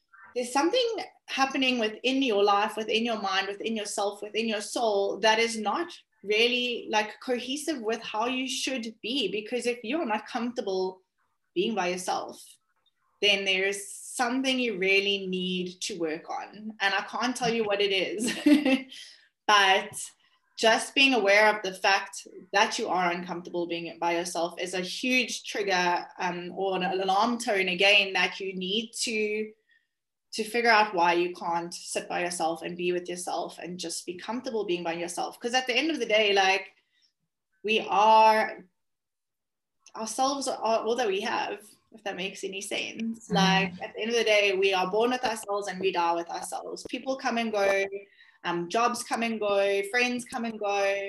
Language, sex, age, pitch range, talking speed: English, female, 20-39, 190-240 Hz, 175 wpm